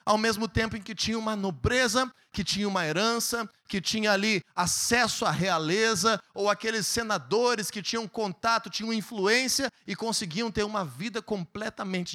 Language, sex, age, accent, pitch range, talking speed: Portuguese, male, 30-49, Brazilian, 200-250 Hz, 160 wpm